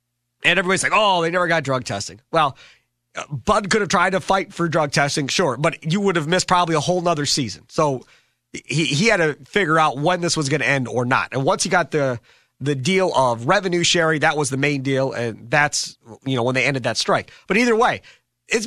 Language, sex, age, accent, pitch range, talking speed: English, male, 30-49, American, 130-220 Hz, 235 wpm